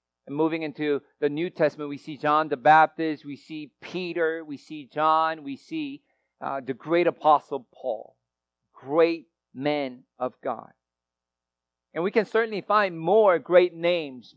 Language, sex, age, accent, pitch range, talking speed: English, male, 50-69, American, 115-175 Hz, 150 wpm